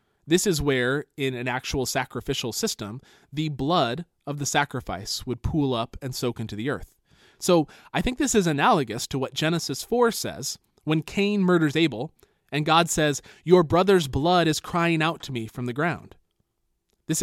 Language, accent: English, American